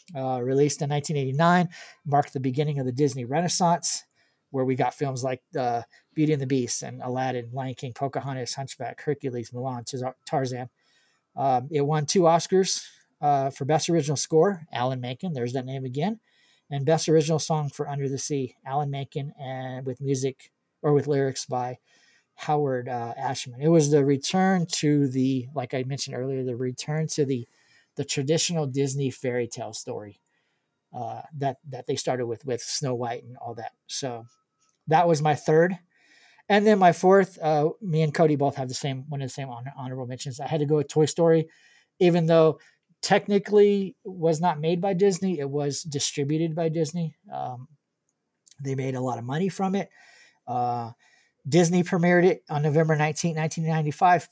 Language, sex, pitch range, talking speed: English, male, 130-165 Hz, 175 wpm